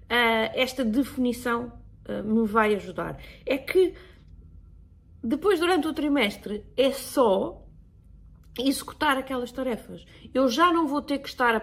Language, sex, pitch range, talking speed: Portuguese, female, 210-270 Hz, 125 wpm